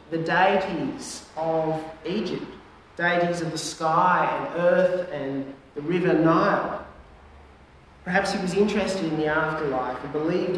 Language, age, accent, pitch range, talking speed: English, 40-59, Australian, 150-185 Hz, 130 wpm